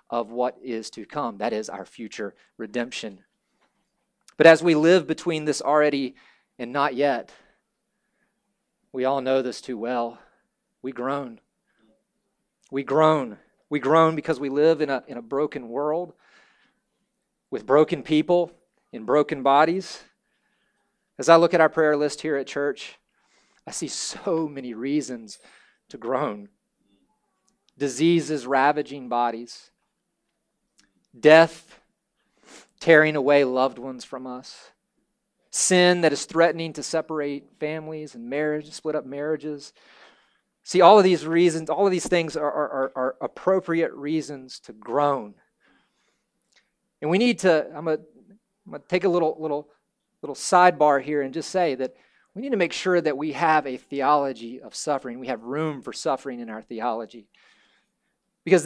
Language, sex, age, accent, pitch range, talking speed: English, male, 40-59, American, 135-165 Hz, 145 wpm